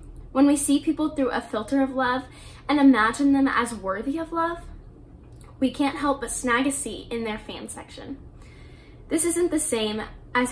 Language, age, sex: English, 10-29, female